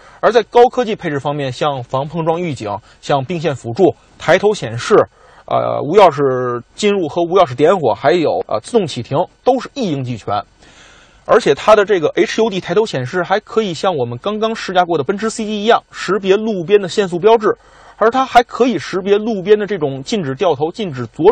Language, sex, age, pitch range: Chinese, male, 30-49, 135-205 Hz